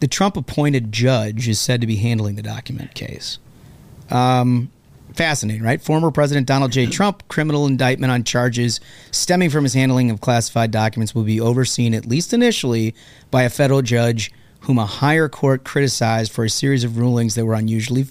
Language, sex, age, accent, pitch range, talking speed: English, male, 30-49, American, 110-135 Hz, 175 wpm